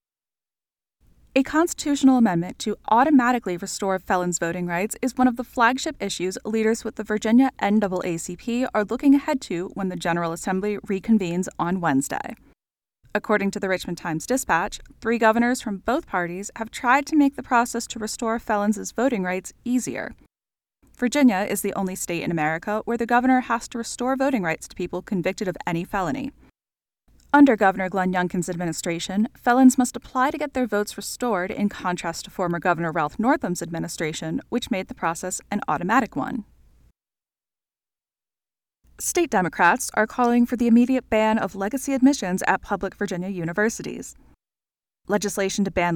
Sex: female